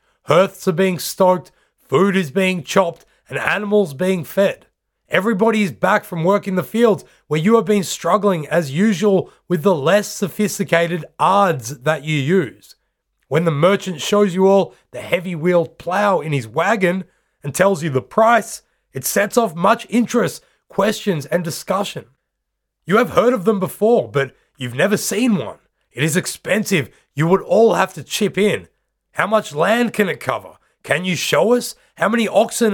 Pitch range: 170-215 Hz